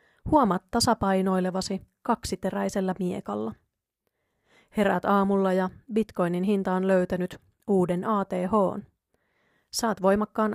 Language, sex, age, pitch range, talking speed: Finnish, female, 30-49, 180-215 Hz, 80 wpm